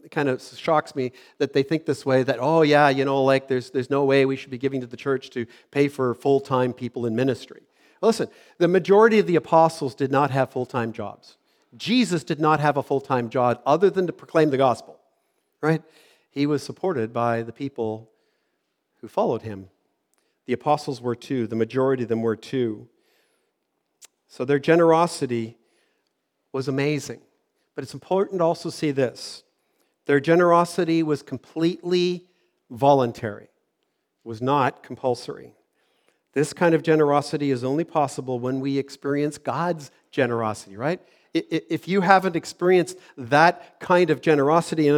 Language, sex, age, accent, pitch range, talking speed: English, male, 50-69, American, 125-165 Hz, 160 wpm